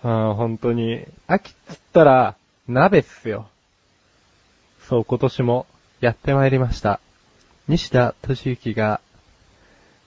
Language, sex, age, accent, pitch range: Japanese, male, 20-39, native, 115-185 Hz